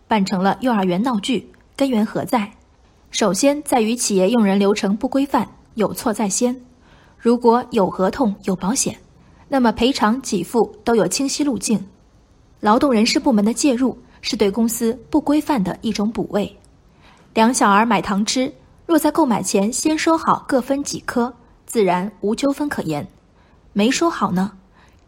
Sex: female